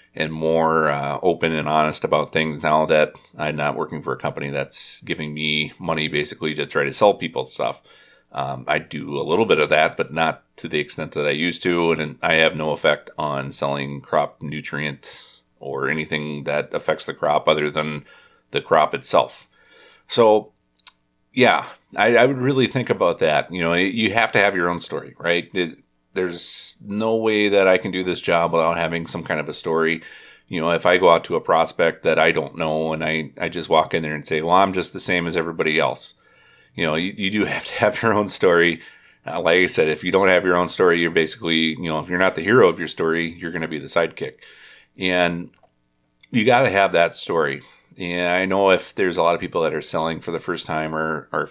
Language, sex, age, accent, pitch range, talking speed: English, male, 30-49, American, 75-90 Hz, 225 wpm